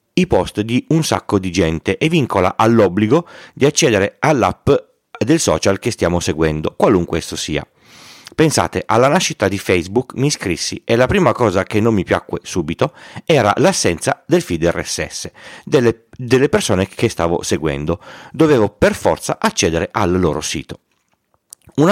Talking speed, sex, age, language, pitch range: 155 wpm, male, 40-59, Italian, 85-115 Hz